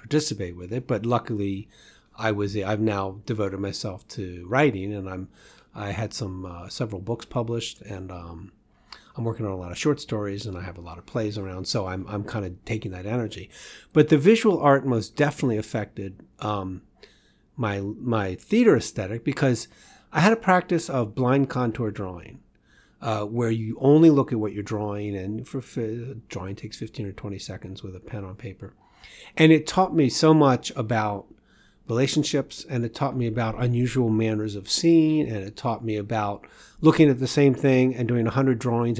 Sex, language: male, English